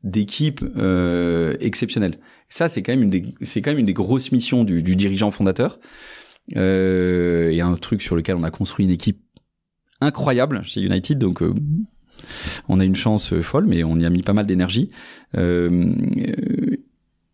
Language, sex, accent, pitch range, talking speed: French, male, French, 90-120 Hz, 185 wpm